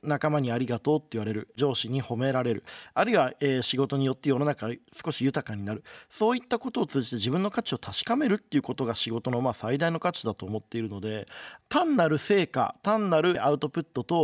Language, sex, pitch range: Japanese, male, 120-165 Hz